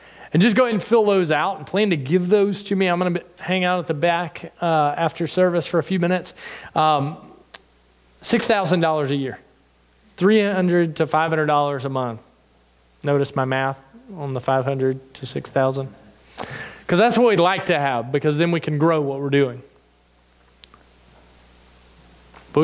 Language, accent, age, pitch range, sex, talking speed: English, American, 20-39, 130-190 Hz, male, 165 wpm